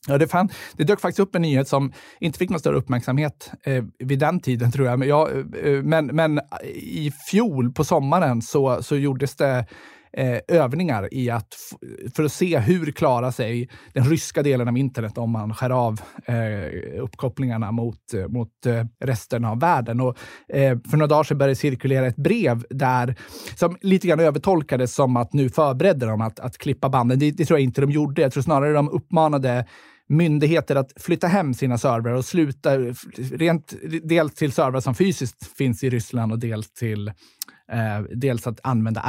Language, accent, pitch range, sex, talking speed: Swedish, native, 120-150 Hz, male, 185 wpm